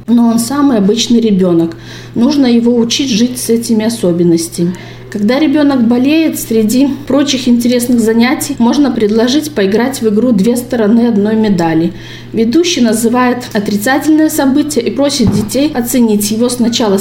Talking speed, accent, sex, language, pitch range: 135 wpm, native, female, Russian, 205-260 Hz